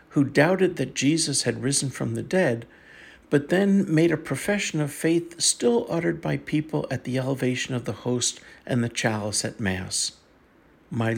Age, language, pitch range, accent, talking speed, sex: 60-79, English, 130-180 Hz, American, 170 wpm, male